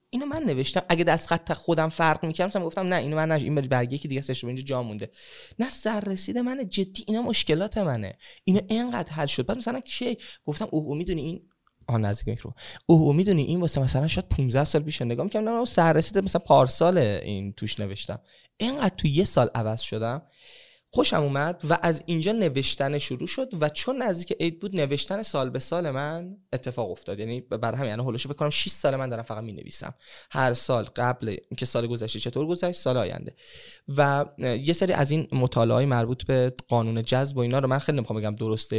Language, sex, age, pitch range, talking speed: Persian, male, 20-39, 120-175 Hz, 205 wpm